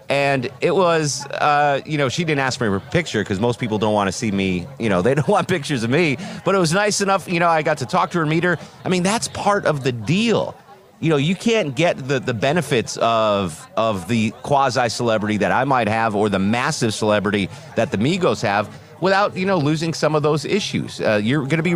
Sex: male